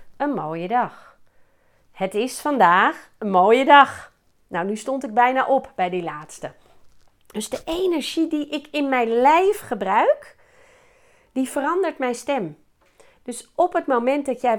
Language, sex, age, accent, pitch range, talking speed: Dutch, female, 40-59, Dutch, 210-285 Hz, 150 wpm